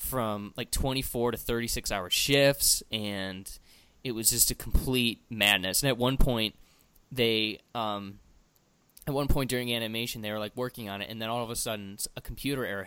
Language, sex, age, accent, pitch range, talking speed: English, male, 20-39, American, 100-125 Hz, 185 wpm